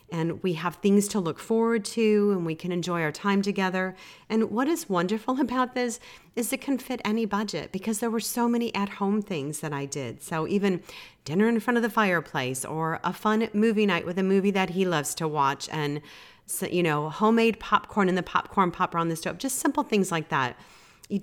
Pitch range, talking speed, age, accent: 155-220 Hz, 215 wpm, 40-59, American